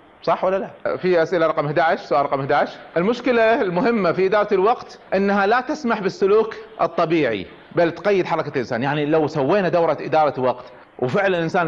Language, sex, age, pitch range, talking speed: Arabic, male, 30-49, 165-220 Hz, 165 wpm